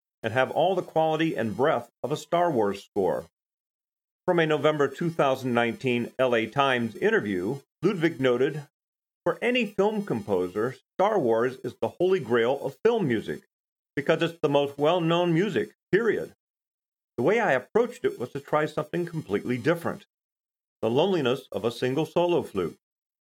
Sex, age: male, 40-59